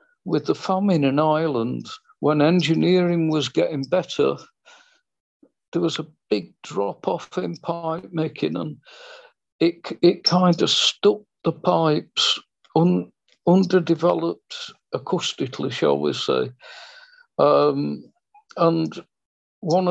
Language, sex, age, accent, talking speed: English, male, 60-79, British, 100 wpm